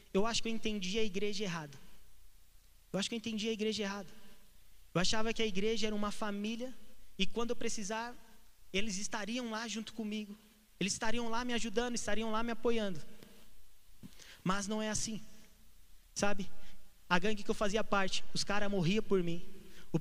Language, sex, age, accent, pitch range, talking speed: Portuguese, male, 20-39, Brazilian, 195-220 Hz, 175 wpm